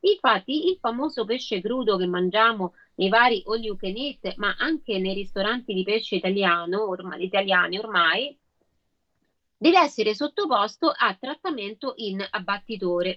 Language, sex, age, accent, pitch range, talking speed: Italian, female, 30-49, native, 195-270 Hz, 120 wpm